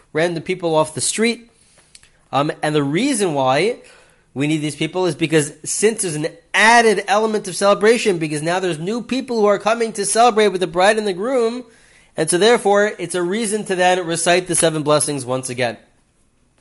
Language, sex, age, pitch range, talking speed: English, male, 30-49, 130-175 Hz, 190 wpm